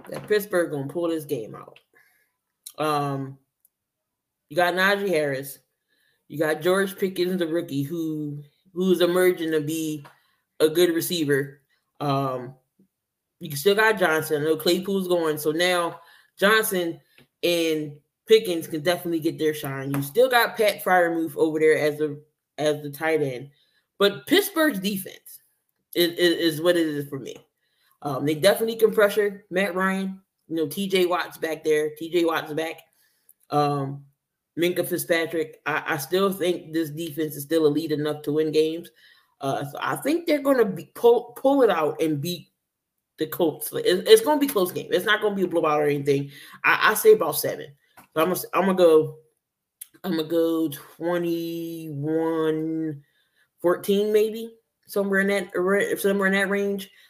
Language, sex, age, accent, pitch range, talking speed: English, male, 10-29, American, 155-195 Hz, 165 wpm